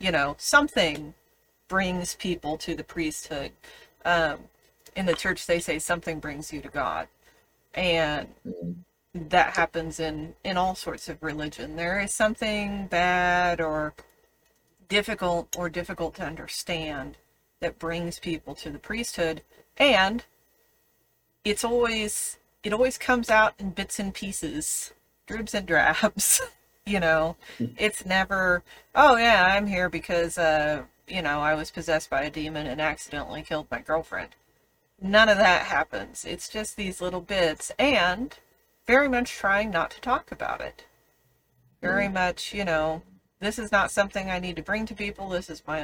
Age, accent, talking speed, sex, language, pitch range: 40-59, American, 150 wpm, female, English, 160-205 Hz